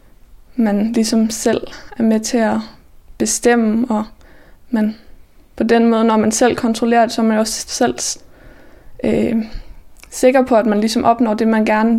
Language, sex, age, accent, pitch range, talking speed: Danish, female, 20-39, native, 215-230 Hz, 170 wpm